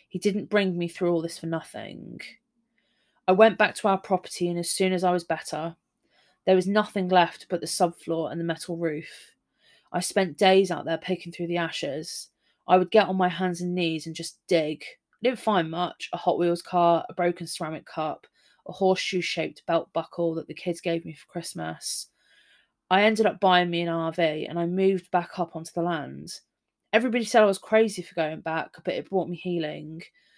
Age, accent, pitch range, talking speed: 20-39, British, 165-185 Hz, 205 wpm